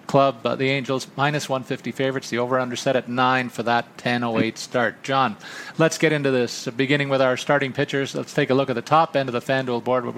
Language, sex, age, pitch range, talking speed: English, male, 40-59, 120-140 Hz, 235 wpm